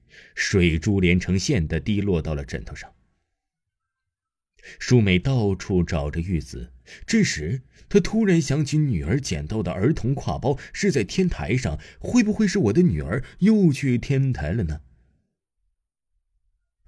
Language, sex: Chinese, male